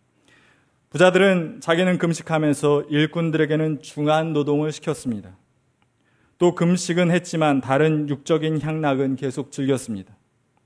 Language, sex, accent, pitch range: Korean, male, native, 125-160 Hz